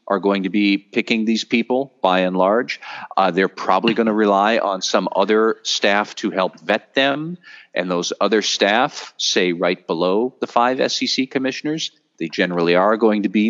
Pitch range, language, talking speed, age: 90-120 Hz, English, 180 wpm, 40-59